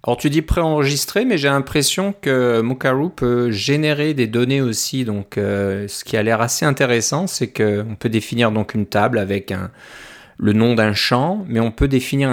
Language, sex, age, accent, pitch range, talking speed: French, male, 30-49, French, 105-130 Hz, 195 wpm